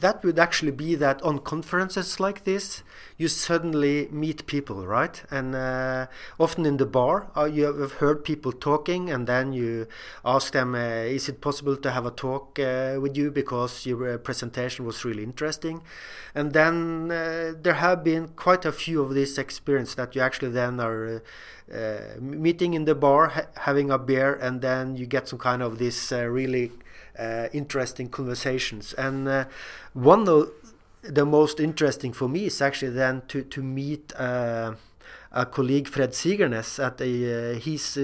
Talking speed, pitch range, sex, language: 175 wpm, 125-155 Hz, male, English